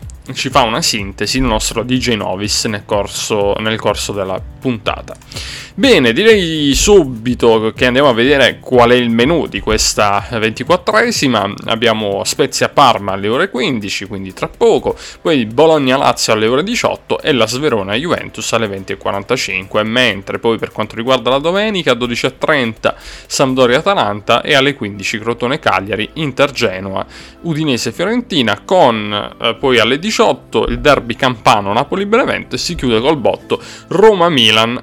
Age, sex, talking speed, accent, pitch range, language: 20-39, male, 150 wpm, native, 110-140 Hz, Italian